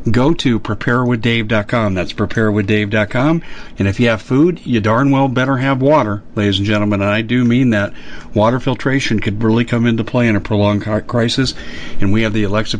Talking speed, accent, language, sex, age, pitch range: 190 wpm, American, English, male, 50-69, 105-130 Hz